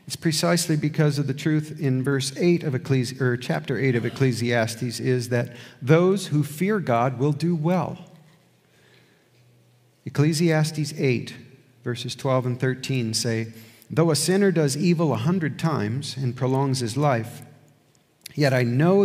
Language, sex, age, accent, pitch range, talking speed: English, male, 50-69, American, 125-170 Hz, 150 wpm